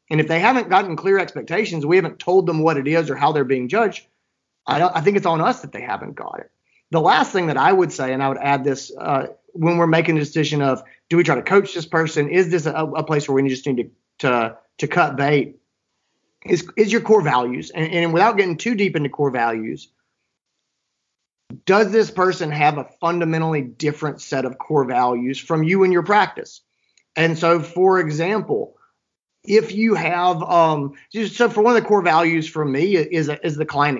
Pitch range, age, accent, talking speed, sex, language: 135-175 Hz, 30-49, American, 215 wpm, male, English